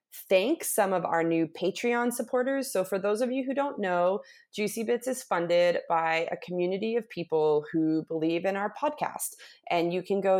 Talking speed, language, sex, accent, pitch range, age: 190 wpm, English, female, American, 175-235 Hz, 30-49